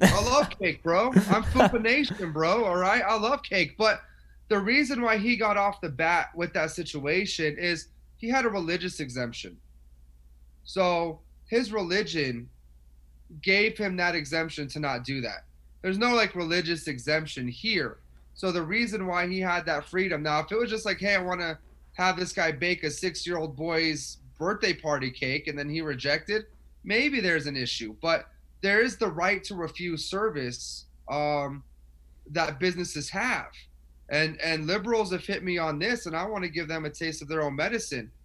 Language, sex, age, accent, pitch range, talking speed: English, male, 30-49, American, 140-190 Hz, 180 wpm